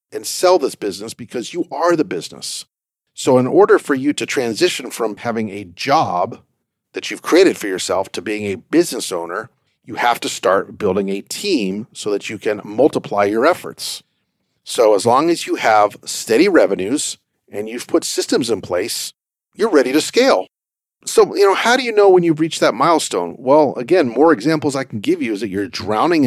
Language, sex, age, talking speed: English, male, 50-69, 195 wpm